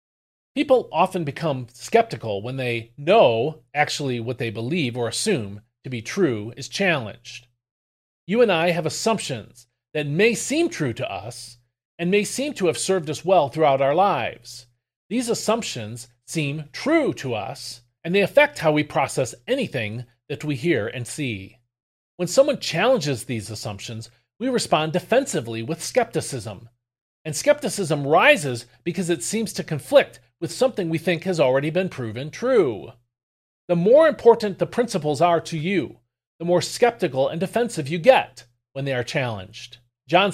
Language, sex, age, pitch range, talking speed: English, male, 40-59, 120-175 Hz, 155 wpm